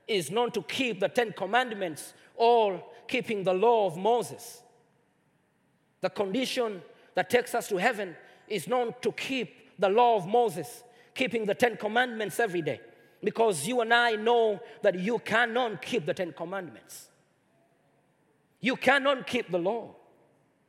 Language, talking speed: Swedish, 150 wpm